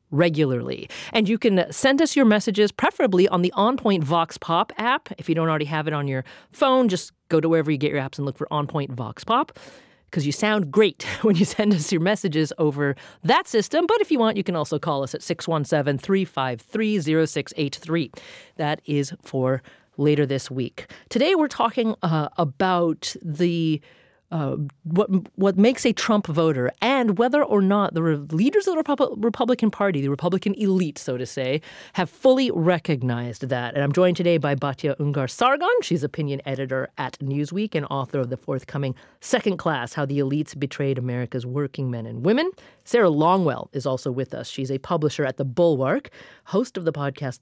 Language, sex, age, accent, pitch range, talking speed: English, female, 40-59, American, 140-205 Hz, 185 wpm